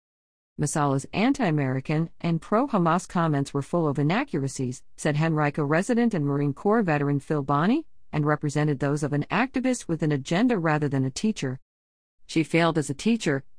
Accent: American